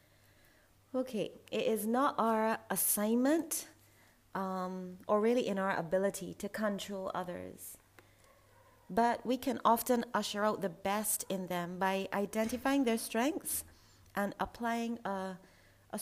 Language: English